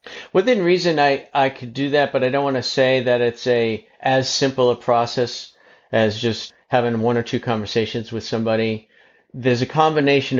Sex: male